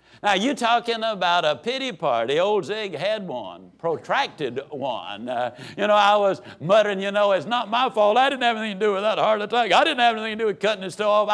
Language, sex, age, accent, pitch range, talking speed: English, male, 60-79, American, 150-235 Hz, 240 wpm